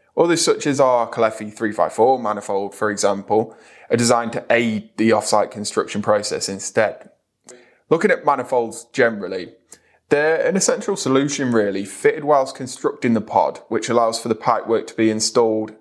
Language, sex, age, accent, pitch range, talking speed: English, male, 20-39, British, 105-135 Hz, 150 wpm